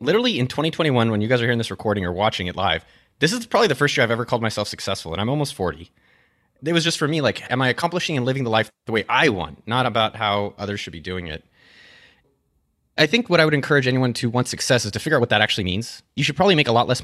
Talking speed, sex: 280 wpm, male